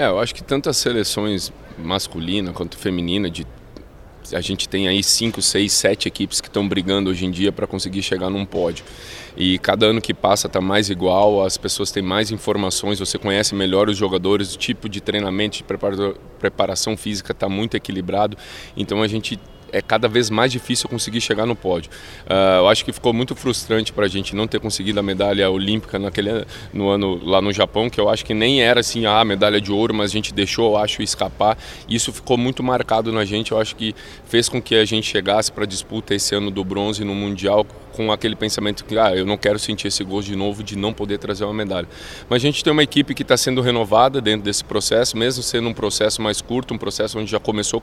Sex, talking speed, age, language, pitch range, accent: male, 225 wpm, 20-39, Portuguese, 100-110 Hz, Brazilian